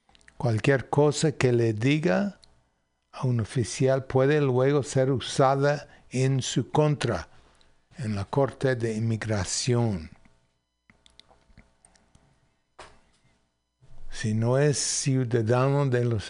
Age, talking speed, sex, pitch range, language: 60-79, 95 wpm, male, 110-135 Hz, English